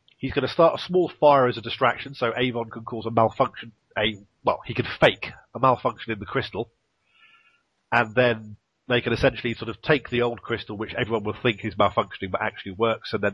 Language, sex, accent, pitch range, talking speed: English, male, British, 110-135 Hz, 215 wpm